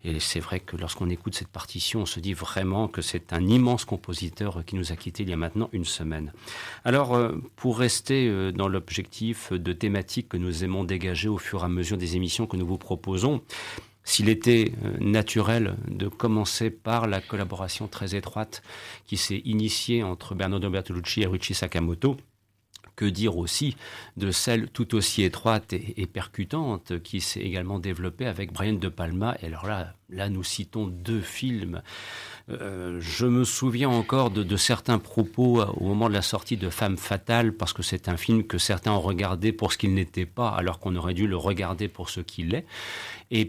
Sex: male